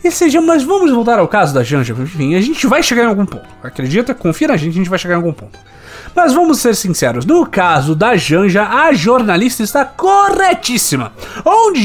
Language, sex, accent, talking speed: Portuguese, male, Brazilian, 210 wpm